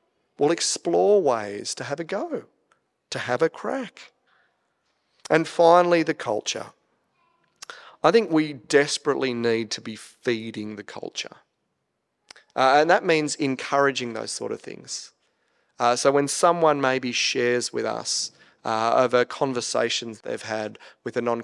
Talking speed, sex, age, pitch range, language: 140 wpm, male, 30-49, 120-170 Hz, English